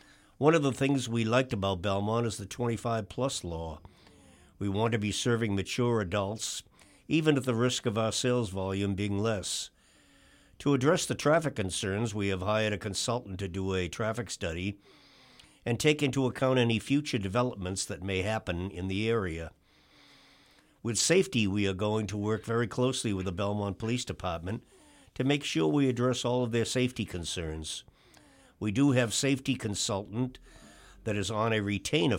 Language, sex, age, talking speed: English, male, 60-79, 170 wpm